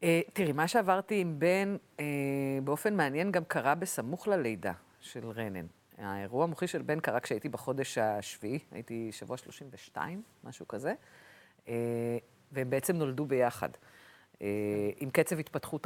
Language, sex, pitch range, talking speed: Hebrew, female, 125-170 Hz, 140 wpm